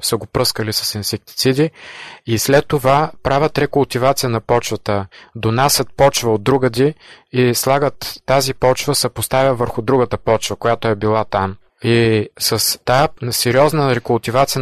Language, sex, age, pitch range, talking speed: Bulgarian, male, 20-39, 110-130 Hz, 140 wpm